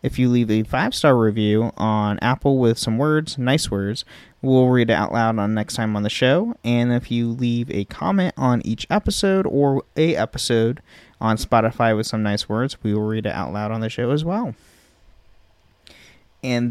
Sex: male